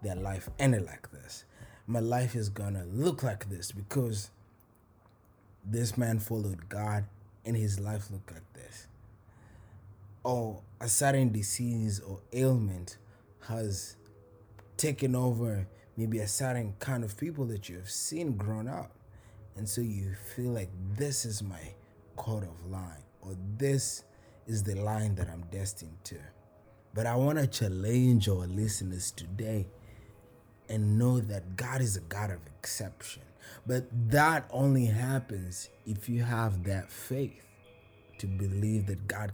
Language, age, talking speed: English, 20-39, 140 wpm